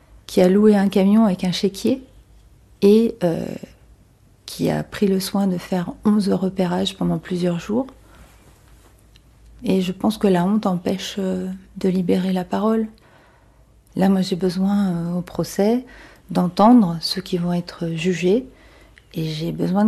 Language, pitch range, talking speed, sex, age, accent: French, 175-210 Hz, 150 wpm, female, 40-59, French